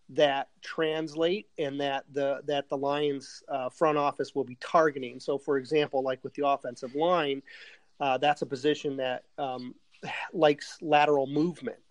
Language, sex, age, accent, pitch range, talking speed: English, male, 30-49, American, 135-150 Hz, 155 wpm